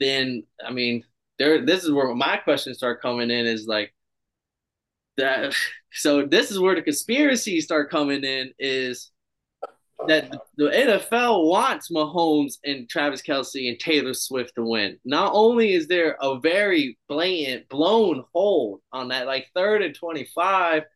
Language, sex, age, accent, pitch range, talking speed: English, male, 20-39, American, 125-175 Hz, 150 wpm